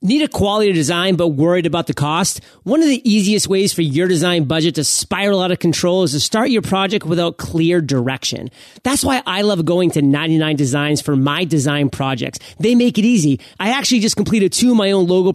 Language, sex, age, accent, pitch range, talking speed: English, male, 30-49, American, 160-200 Hz, 220 wpm